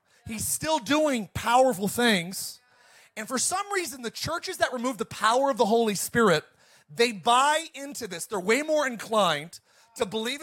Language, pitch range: English, 205-270 Hz